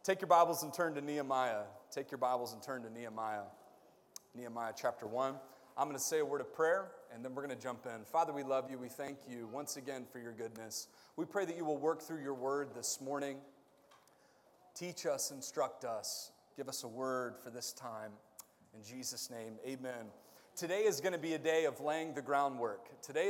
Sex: male